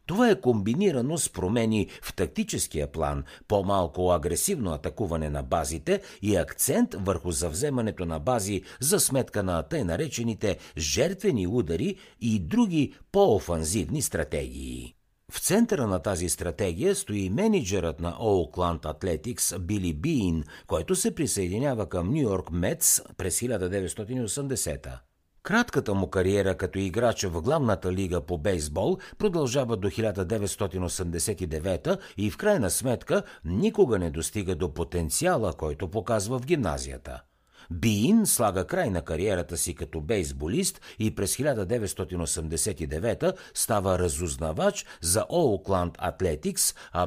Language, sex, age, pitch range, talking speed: Bulgarian, male, 60-79, 85-120 Hz, 120 wpm